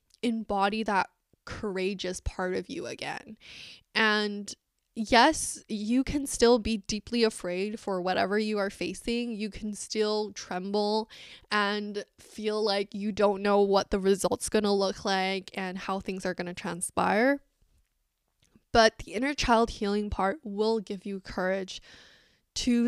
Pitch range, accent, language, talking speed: 195-220 Hz, American, English, 145 wpm